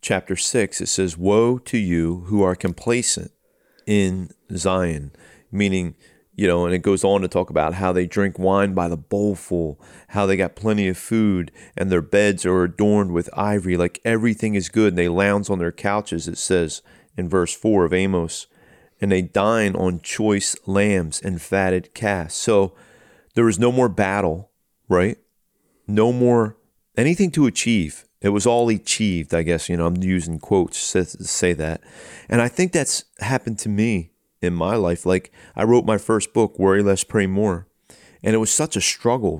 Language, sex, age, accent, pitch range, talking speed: English, male, 40-59, American, 90-110 Hz, 185 wpm